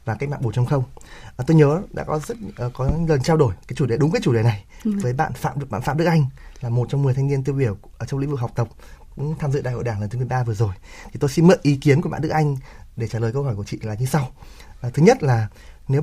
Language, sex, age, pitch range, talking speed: Vietnamese, male, 20-39, 115-145 Hz, 315 wpm